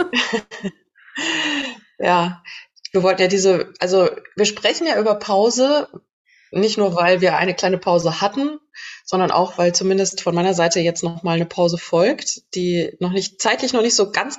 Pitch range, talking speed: 170-210 Hz, 165 wpm